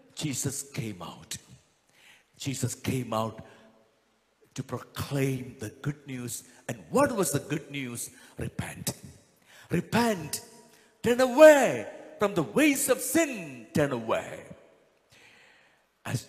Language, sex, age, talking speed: English, male, 50-69, 105 wpm